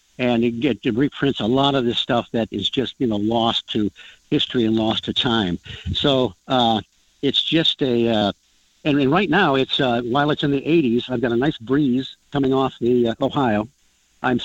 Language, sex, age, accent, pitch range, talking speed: English, male, 60-79, American, 120-145 Hz, 210 wpm